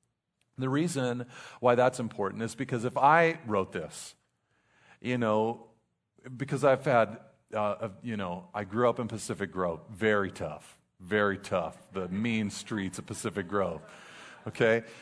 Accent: American